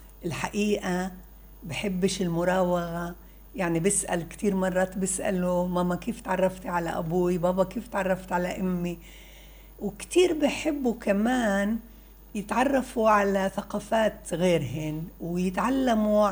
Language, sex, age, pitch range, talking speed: Arabic, female, 60-79, 170-220 Hz, 95 wpm